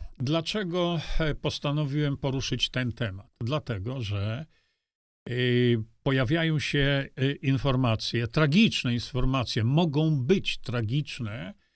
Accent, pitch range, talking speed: native, 125-165 Hz, 75 wpm